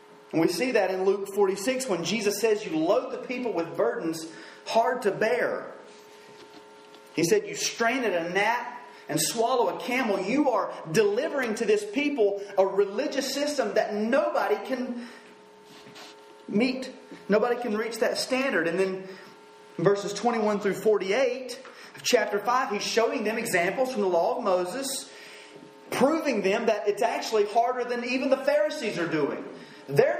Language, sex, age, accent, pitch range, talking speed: English, male, 30-49, American, 185-255 Hz, 155 wpm